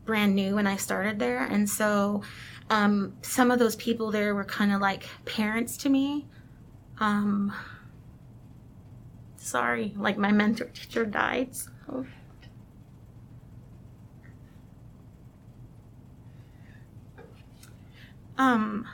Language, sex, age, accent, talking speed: English, female, 20-39, American, 95 wpm